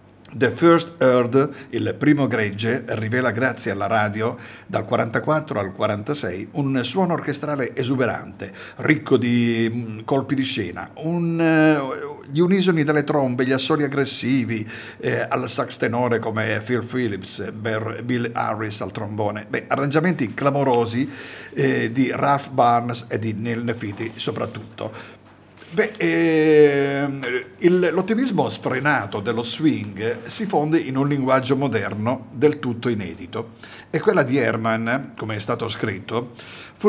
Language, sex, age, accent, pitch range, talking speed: Italian, male, 50-69, native, 110-145 Hz, 130 wpm